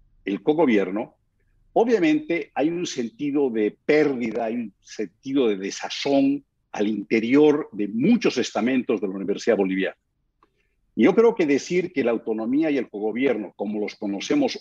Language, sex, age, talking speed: Spanish, male, 50-69, 150 wpm